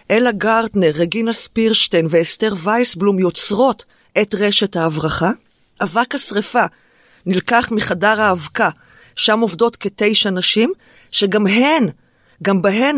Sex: female